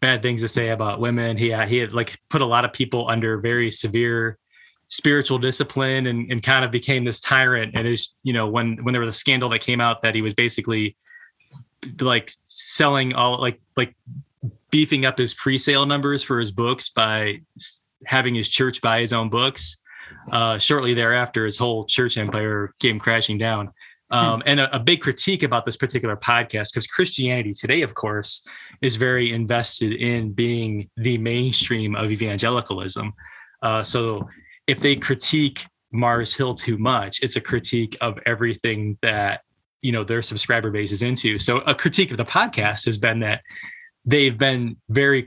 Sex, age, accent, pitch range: male, 20-39, American, 115-130 Hz